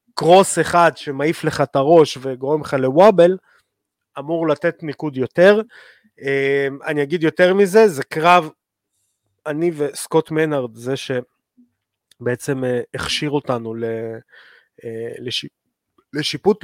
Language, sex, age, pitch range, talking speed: Hebrew, male, 30-49, 125-160 Hz, 95 wpm